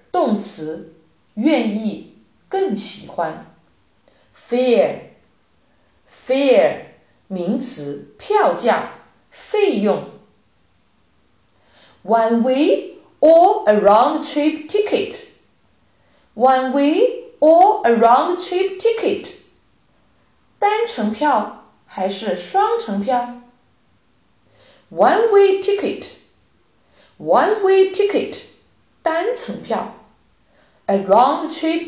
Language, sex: Chinese, female